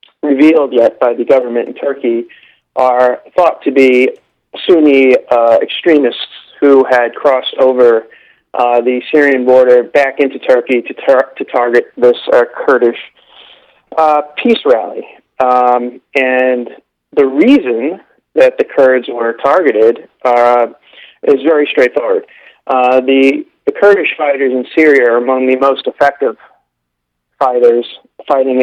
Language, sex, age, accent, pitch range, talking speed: English, male, 40-59, American, 125-150 Hz, 130 wpm